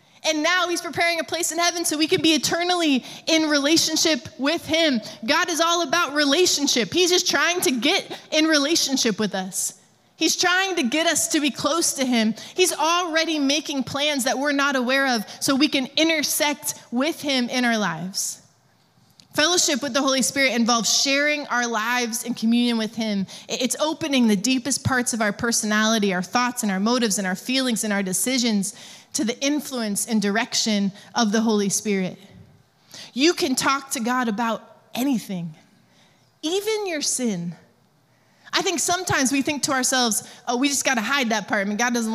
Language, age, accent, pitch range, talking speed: English, 20-39, American, 225-320 Hz, 185 wpm